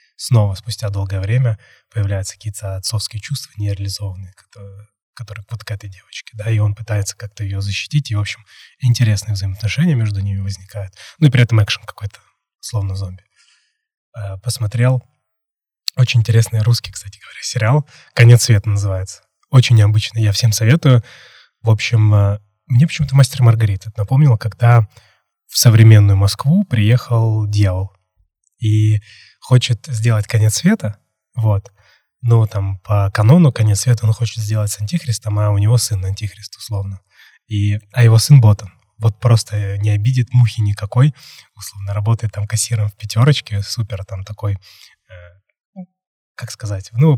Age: 20-39